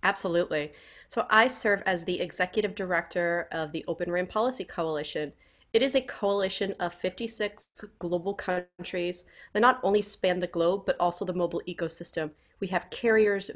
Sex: female